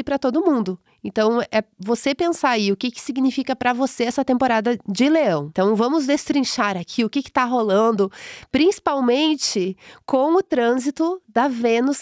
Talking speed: 165 wpm